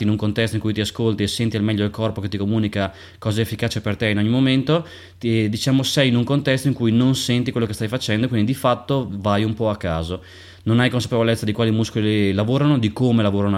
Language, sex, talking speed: Italian, male, 250 wpm